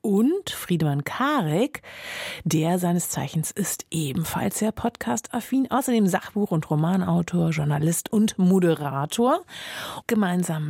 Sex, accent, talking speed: female, German, 100 wpm